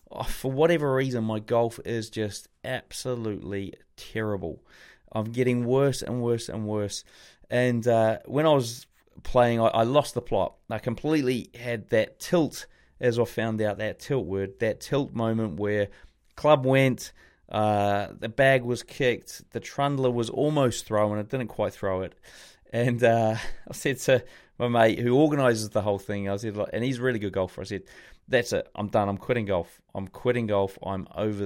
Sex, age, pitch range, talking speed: male, 30-49, 105-125 Hz, 185 wpm